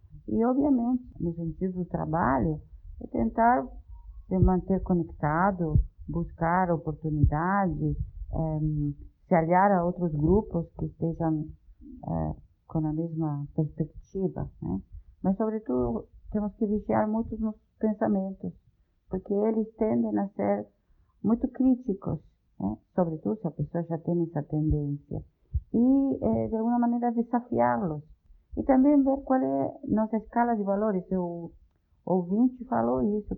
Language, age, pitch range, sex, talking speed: Portuguese, 50-69, 145-215 Hz, female, 120 wpm